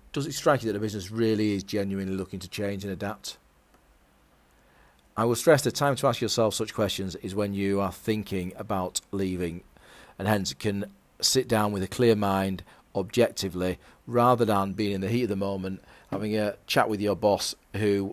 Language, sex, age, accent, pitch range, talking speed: English, male, 40-59, British, 95-115 Hz, 190 wpm